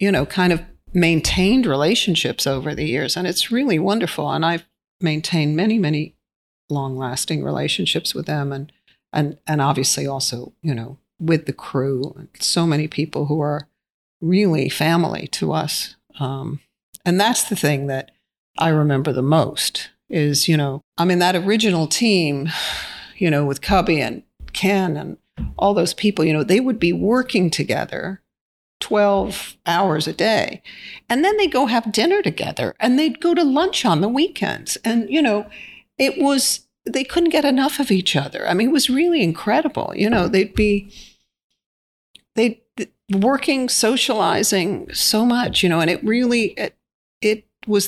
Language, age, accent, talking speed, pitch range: English, 50-69, American, 165 wpm, 155-220 Hz